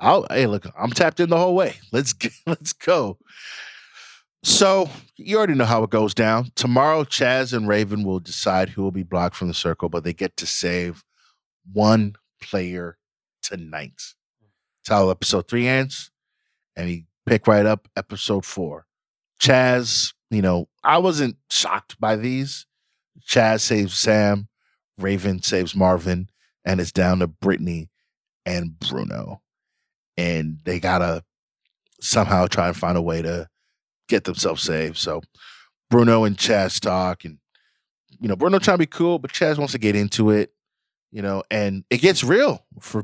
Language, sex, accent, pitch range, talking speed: English, male, American, 90-130 Hz, 160 wpm